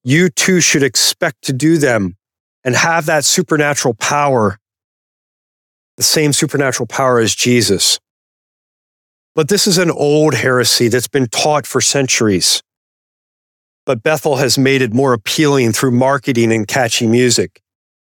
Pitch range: 120-160 Hz